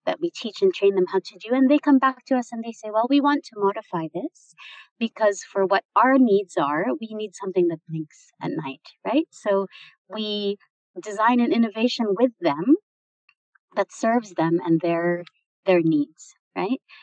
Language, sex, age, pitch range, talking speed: English, female, 30-49, 185-245 Hz, 185 wpm